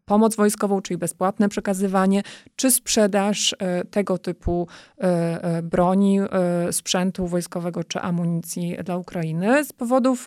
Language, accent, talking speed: Polish, native, 105 wpm